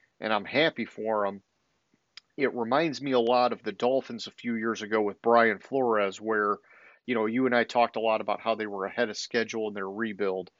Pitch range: 110-130 Hz